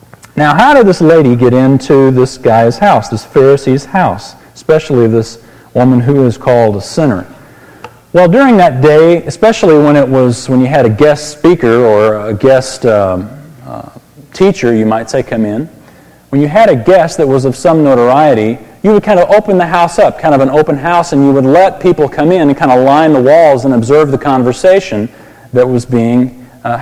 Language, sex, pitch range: English, male, 120-155 Hz